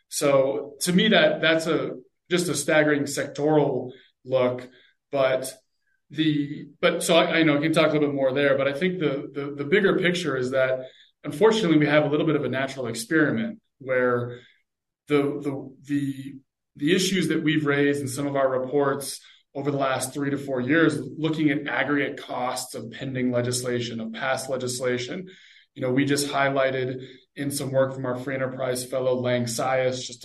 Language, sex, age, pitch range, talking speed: English, male, 20-39, 125-150 Hz, 185 wpm